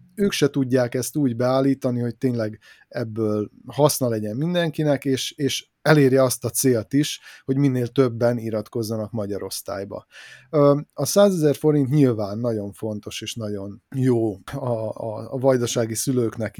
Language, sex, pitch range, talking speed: Hungarian, male, 110-135 Hz, 145 wpm